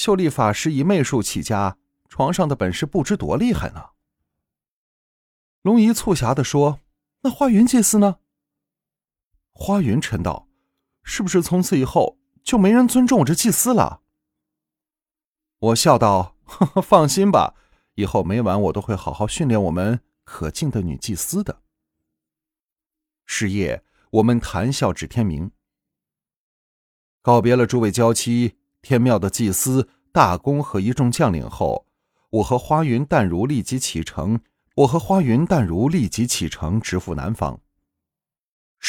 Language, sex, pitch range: Chinese, male, 95-150 Hz